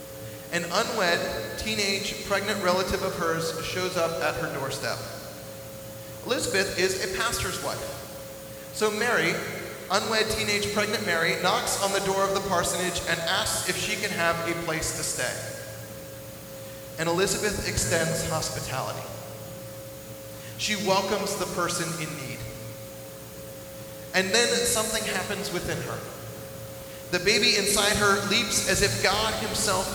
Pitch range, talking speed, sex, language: 130-195 Hz, 130 wpm, male, English